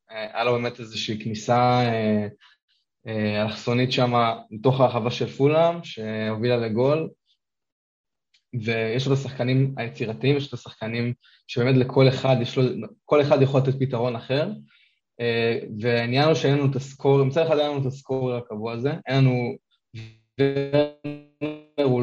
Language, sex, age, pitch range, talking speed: Hebrew, male, 20-39, 115-135 Hz, 130 wpm